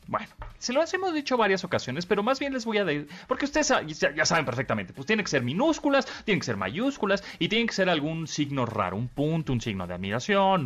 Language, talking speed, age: Spanish, 230 wpm, 30-49